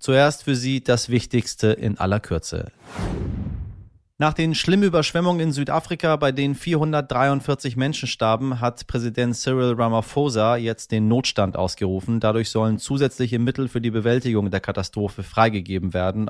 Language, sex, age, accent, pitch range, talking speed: German, male, 30-49, German, 105-130 Hz, 140 wpm